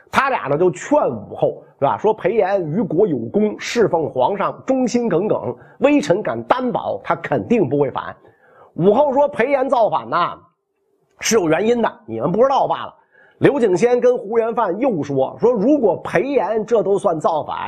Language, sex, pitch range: Chinese, male, 175-265 Hz